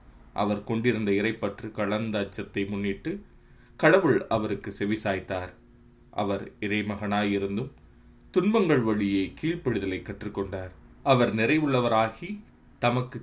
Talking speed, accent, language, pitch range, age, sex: 80 wpm, native, Tamil, 95-115 Hz, 20-39, male